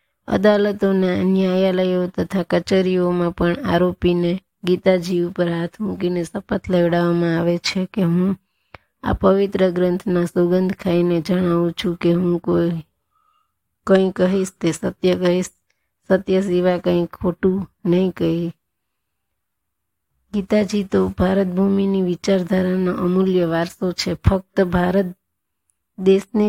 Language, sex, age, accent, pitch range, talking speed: Gujarati, female, 20-39, native, 175-190 Hz, 60 wpm